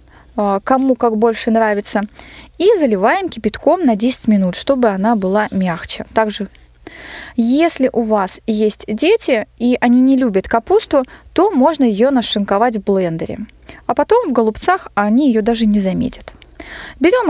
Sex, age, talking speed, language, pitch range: female, 20-39, 140 wpm, Russian, 210-275 Hz